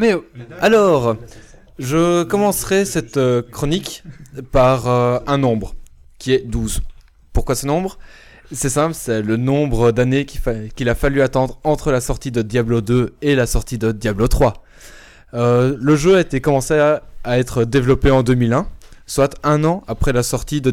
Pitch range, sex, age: 115-145 Hz, male, 20-39